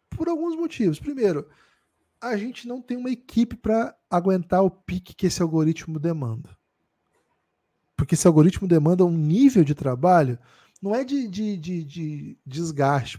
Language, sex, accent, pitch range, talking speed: Portuguese, male, Brazilian, 150-220 Hz, 150 wpm